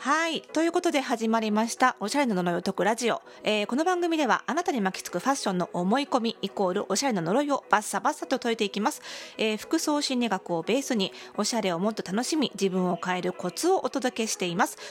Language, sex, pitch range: Japanese, female, 200-275 Hz